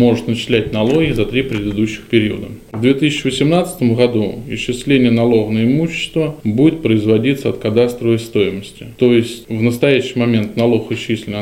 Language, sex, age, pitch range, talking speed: Russian, male, 20-39, 110-130 Hz, 140 wpm